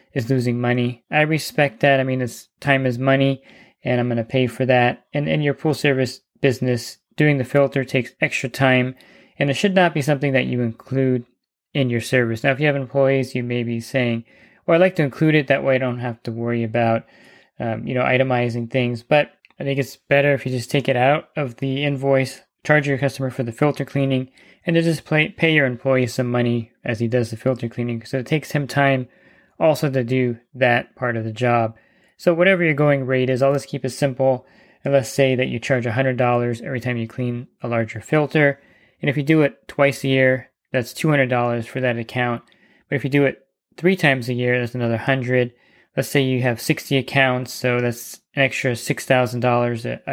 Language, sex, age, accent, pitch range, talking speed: English, male, 20-39, American, 125-140 Hz, 220 wpm